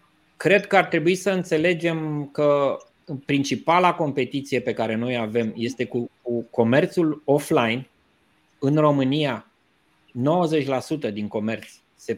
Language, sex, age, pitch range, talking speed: Romanian, male, 20-39, 125-160 Hz, 115 wpm